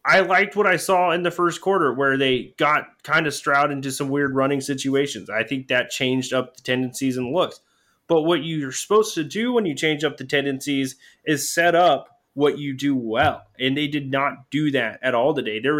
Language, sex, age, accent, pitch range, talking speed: English, male, 20-39, American, 130-160 Hz, 220 wpm